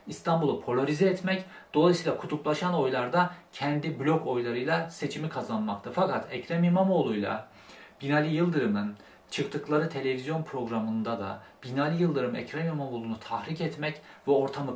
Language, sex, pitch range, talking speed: Turkish, male, 125-170 Hz, 115 wpm